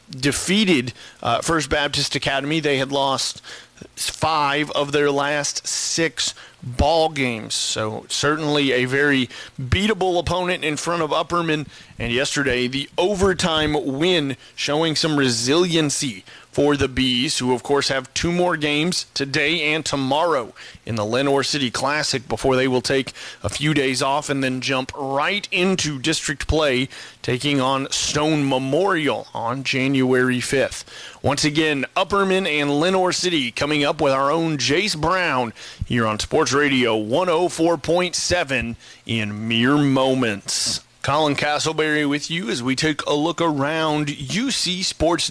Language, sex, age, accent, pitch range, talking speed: English, male, 30-49, American, 130-155 Hz, 140 wpm